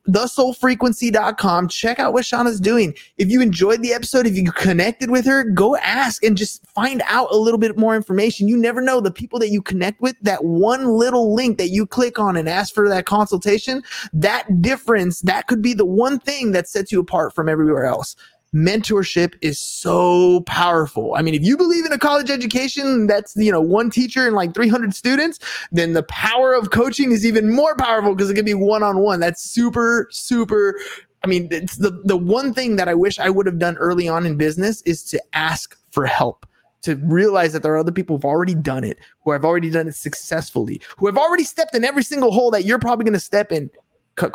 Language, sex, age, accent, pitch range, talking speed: English, male, 20-39, American, 175-235 Hz, 220 wpm